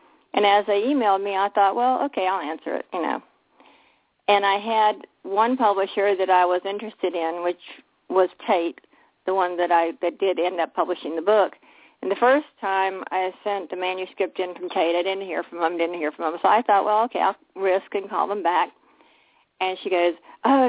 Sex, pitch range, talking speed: female, 180-225 Hz, 210 wpm